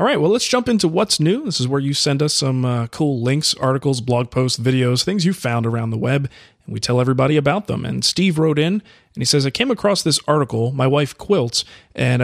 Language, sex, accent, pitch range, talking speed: English, male, American, 120-150 Hz, 245 wpm